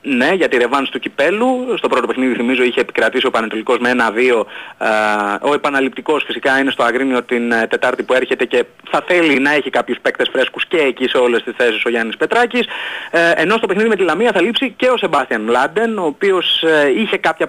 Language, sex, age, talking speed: Greek, male, 30-49, 215 wpm